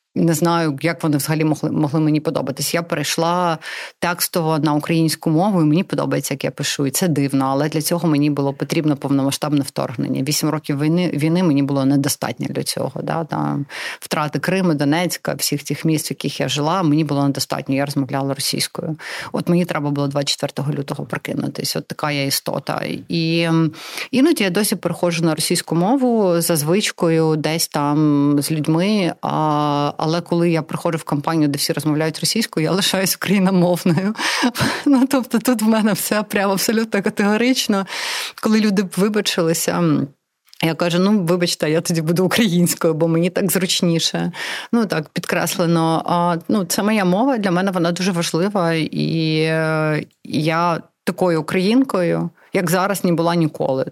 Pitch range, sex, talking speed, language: 150-185 Hz, female, 160 wpm, Ukrainian